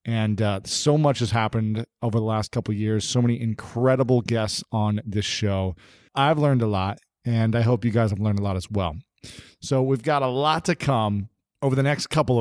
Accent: American